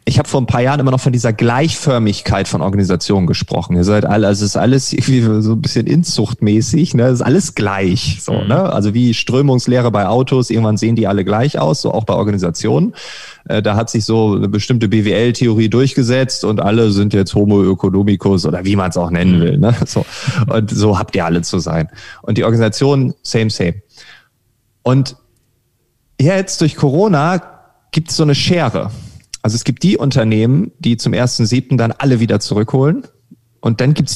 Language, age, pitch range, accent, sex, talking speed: German, 30-49, 105-130 Hz, German, male, 190 wpm